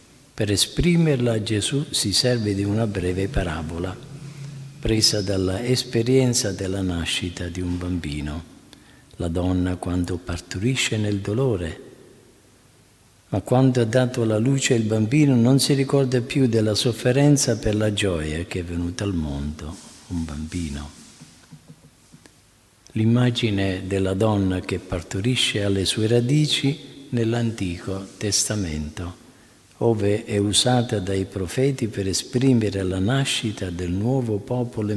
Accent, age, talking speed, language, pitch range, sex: native, 50-69, 115 wpm, Italian, 95-120 Hz, male